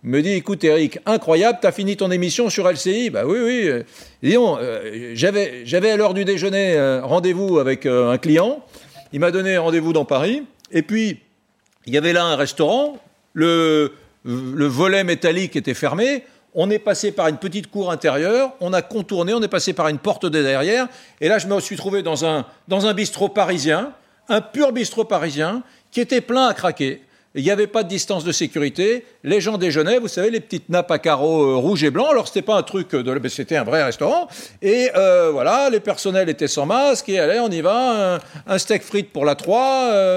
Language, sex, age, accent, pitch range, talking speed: French, male, 50-69, French, 155-220 Hz, 220 wpm